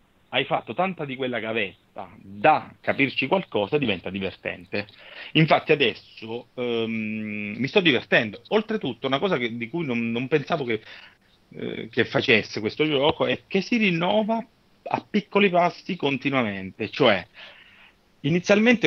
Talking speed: 125 wpm